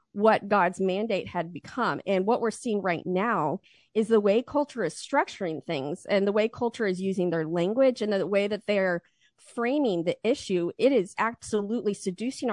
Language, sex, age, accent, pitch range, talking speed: English, female, 40-59, American, 190-235 Hz, 180 wpm